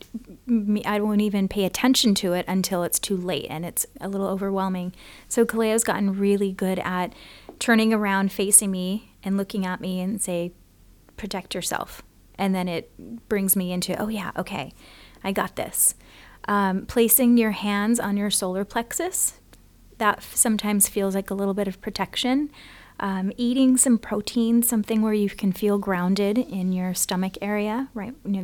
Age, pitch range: 30-49, 185-225 Hz